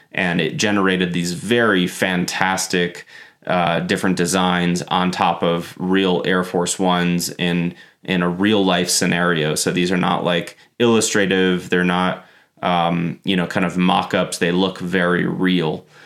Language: English